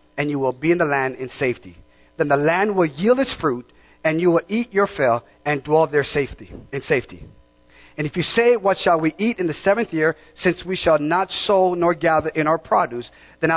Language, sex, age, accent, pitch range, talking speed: English, male, 30-49, American, 135-195 Hz, 220 wpm